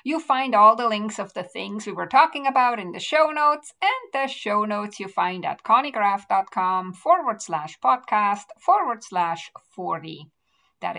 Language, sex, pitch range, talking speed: English, female, 185-270 Hz, 170 wpm